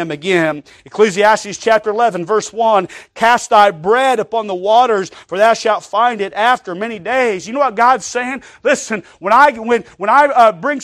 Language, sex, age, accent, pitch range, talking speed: English, male, 40-59, American, 185-240 Hz, 185 wpm